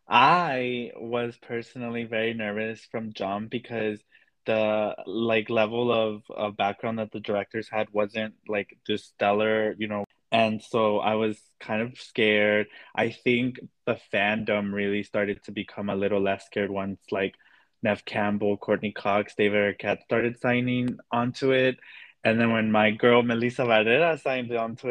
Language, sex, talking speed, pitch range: English, male, 155 wpm, 100-115 Hz